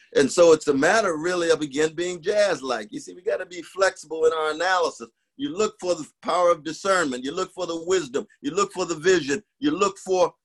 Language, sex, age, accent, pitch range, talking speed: English, male, 50-69, American, 150-195 Hz, 225 wpm